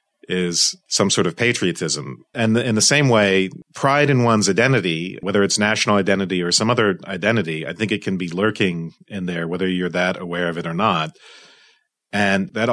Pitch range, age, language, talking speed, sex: 90-110 Hz, 40-59, English, 190 wpm, male